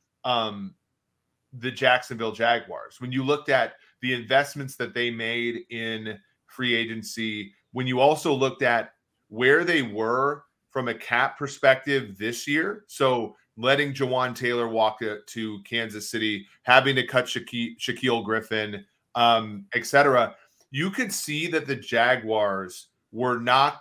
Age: 30-49